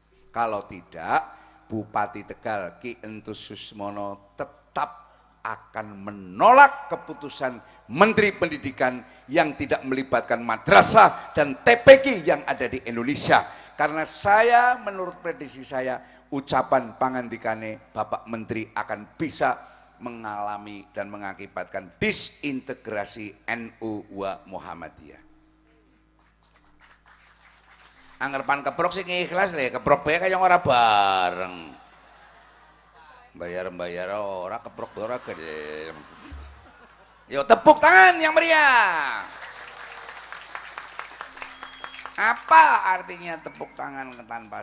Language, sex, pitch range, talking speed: Indonesian, male, 105-170 Hz, 90 wpm